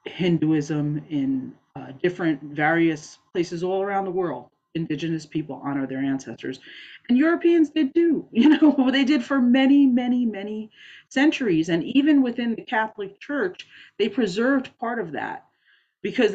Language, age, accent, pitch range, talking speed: English, 30-49, American, 160-245 Hz, 150 wpm